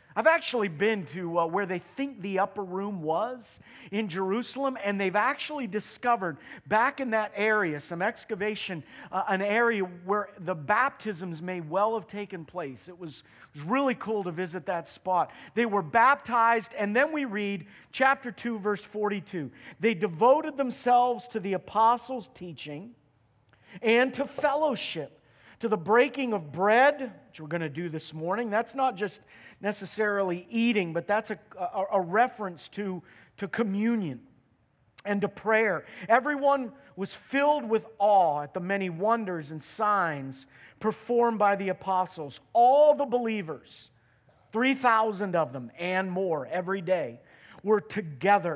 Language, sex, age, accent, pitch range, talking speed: English, male, 40-59, American, 180-230 Hz, 150 wpm